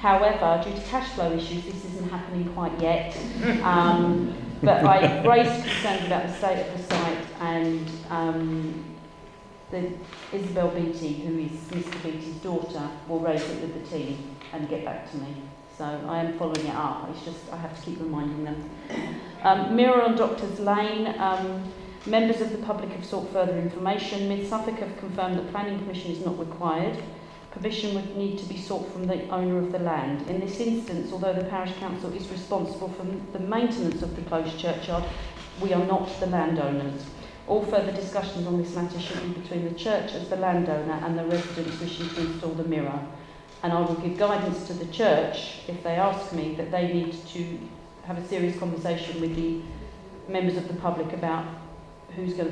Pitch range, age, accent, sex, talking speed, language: 165-190 Hz, 40-59, British, female, 190 wpm, English